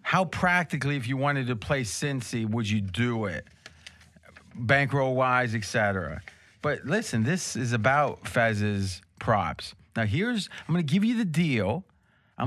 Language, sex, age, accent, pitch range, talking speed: English, male, 30-49, American, 110-155 Hz, 160 wpm